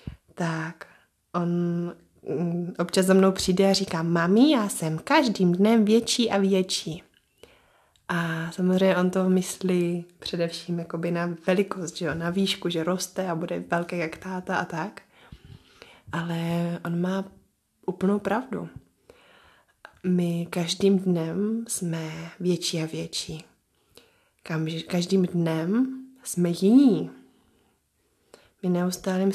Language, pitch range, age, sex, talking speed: Czech, 170-195 Hz, 20-39, female, 110 wpm